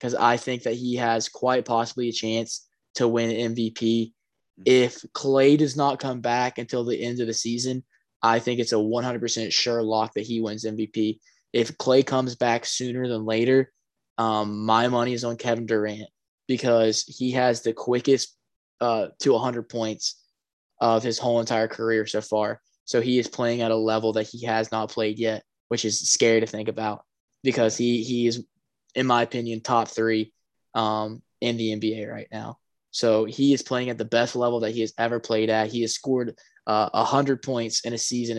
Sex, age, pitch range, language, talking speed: male, 10-29, 110-120 Hz, English, 195 wpm